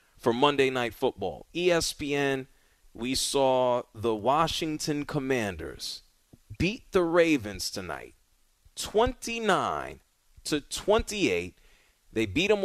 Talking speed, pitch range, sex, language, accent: 90 wpm, 105-145 Hz, male, English, American